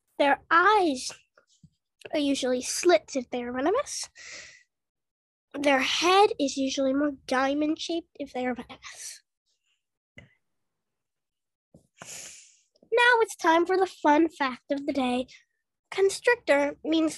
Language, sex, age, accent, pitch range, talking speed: English, female, 10-29, American, 280-370 Hz, 110 wpm